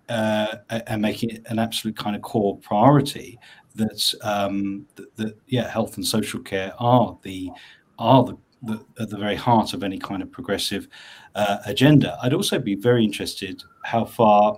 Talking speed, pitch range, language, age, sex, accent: 175 wpm, 95-115 Hz, English, 40-59, male, British